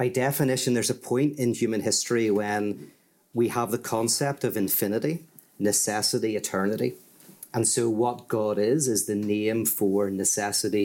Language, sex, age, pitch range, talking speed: English, male, 40-59, 105-125 Hz, 150 wpm